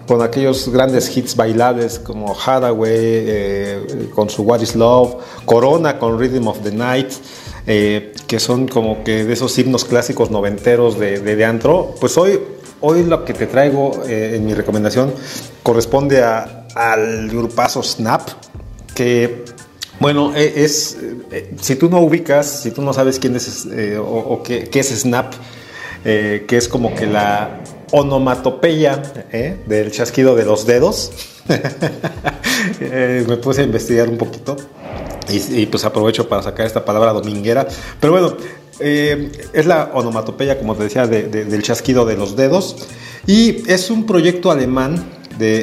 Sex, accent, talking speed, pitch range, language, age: male, Mexican, 160 wpm, 110-130 Hz, Spanish, 40-59